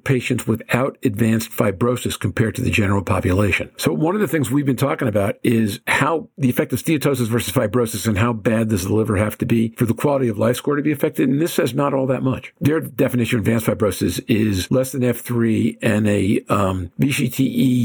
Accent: American